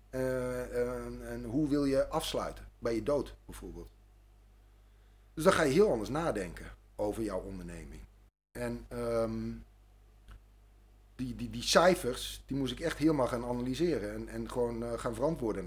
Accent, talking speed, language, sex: Dutch, 155 wpm, Dutch, male